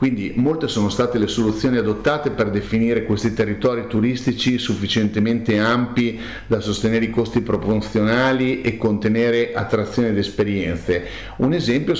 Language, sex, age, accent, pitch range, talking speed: Italian, male, 40-59, native, 100-120 Hz, 130 wpm